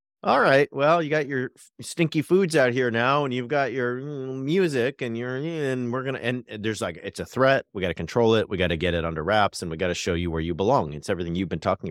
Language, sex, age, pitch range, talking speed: English, male, 40-59, 95-140 Hz, 270 wpm